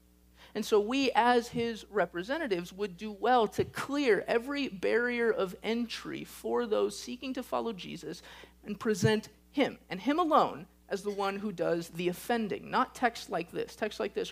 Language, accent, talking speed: English, American, 170 wpm